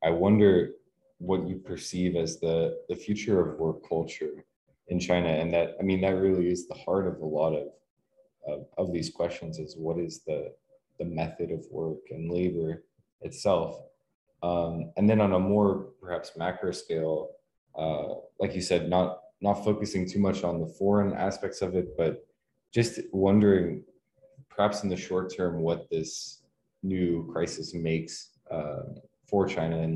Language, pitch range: English, 80-95 Hz